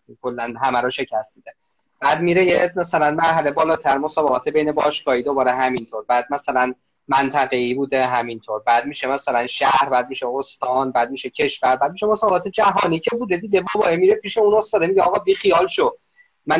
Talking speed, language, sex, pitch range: 190 wpm, Persian, male, 135-195 Hz